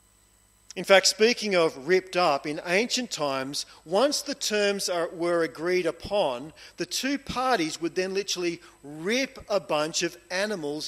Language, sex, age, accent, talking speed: English, male, 40-59, Australian, 145 wpm